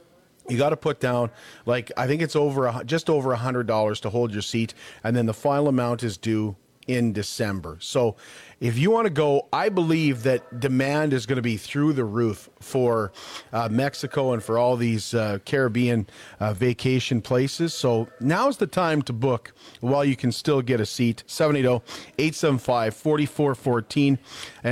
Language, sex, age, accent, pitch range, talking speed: English, male, 40-59, American, 115-145 Hz, 170 wpm